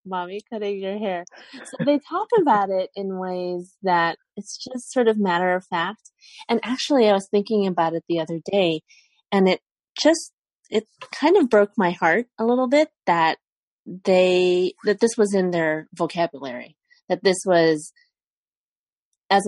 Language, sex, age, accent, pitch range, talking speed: English, female, 30-49, American, 165-240 Hz, 160 wpm